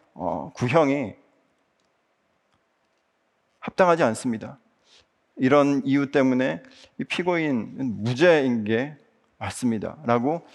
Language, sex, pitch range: Korean, male, 115-180 Hz